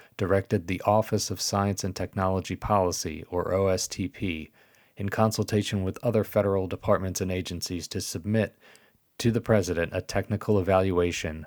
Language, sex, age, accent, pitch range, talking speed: English, male, 30-49, American, 95-105 Hz, 135 wpm